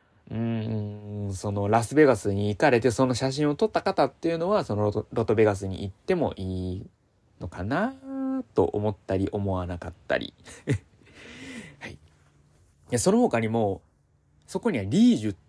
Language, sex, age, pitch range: Japanese, male, 20-39, 100-135 Hz